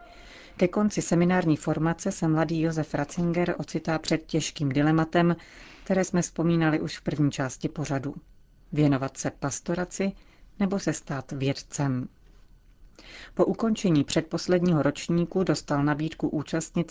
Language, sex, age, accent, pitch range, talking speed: Czech, female, 30-49, native, 145-170 Hz, 120 wpm